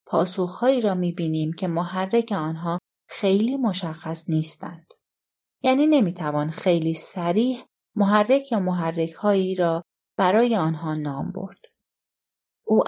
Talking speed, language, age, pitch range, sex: 100 wpm, Persian, 30-49, 160-210 Hz, female